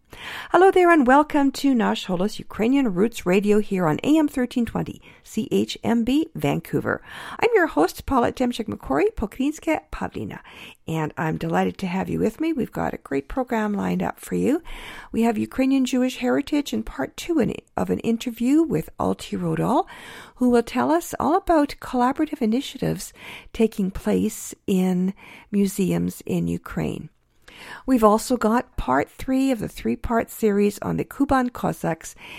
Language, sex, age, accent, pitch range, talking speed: English, female, 50-69, American, 195-270 Hz, 150 wpm